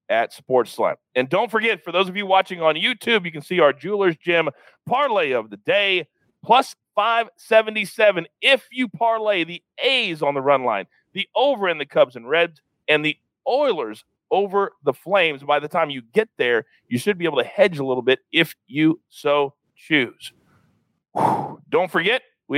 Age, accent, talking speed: 40-59, American, 180 wpm